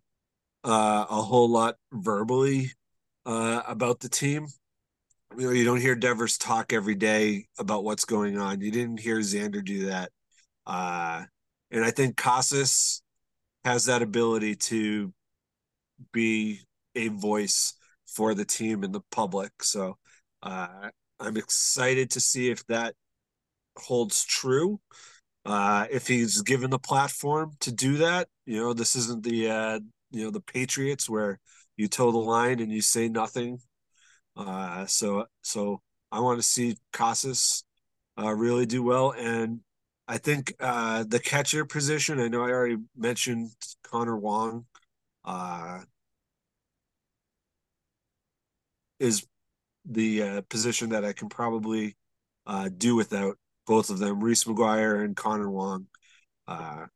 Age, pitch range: 40-59, 105-125 Hz